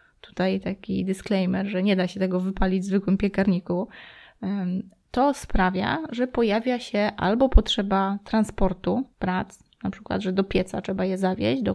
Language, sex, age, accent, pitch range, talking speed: Polish, female, 20-39, native, 190-225 Hz, 155 wpm